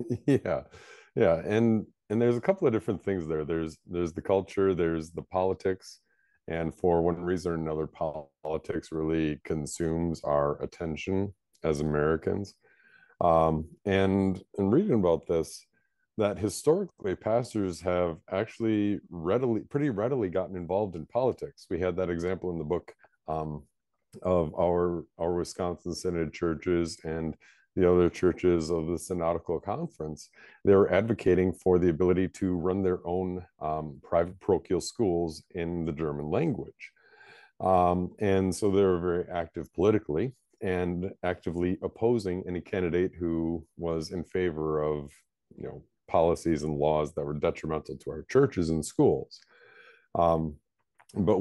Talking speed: 140 wpm